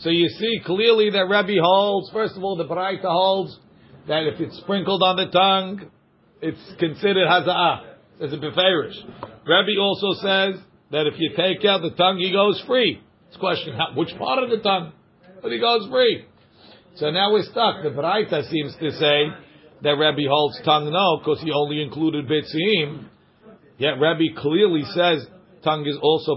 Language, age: English, 50-69